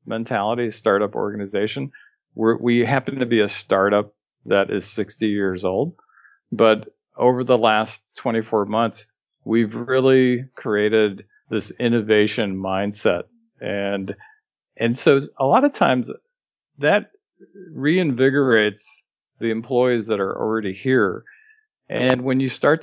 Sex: male